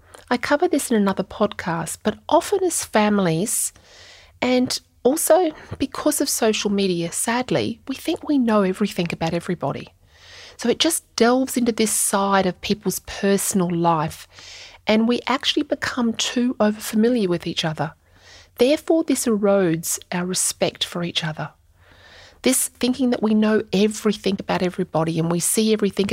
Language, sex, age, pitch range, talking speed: English, female, 30-49, 180-235 Hz, 150 wpm